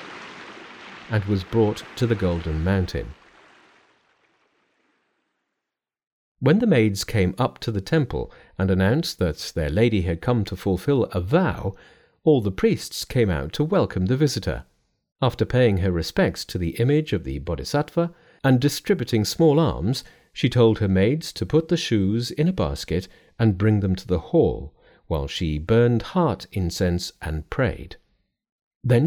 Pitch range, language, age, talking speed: 95-140 Hz, English, 50-69, 155 wpm